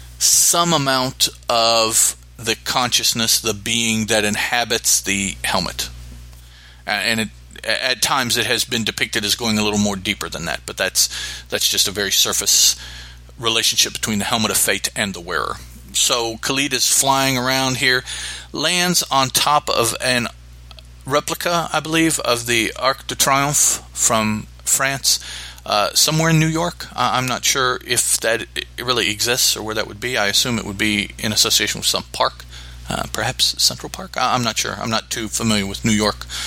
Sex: male